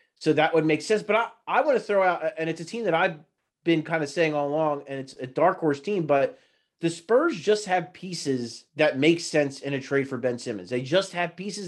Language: English